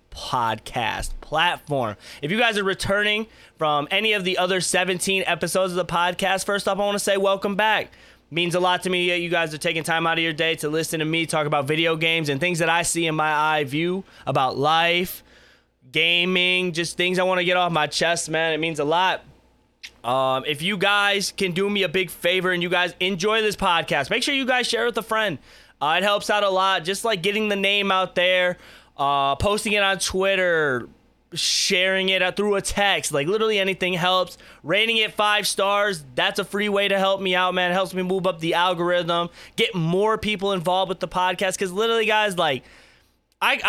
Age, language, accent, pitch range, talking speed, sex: 20-39, English, American, 165-200 Hz, 215 wpm, male